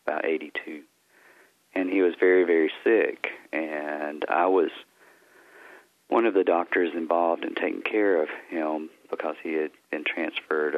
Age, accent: 40-59, American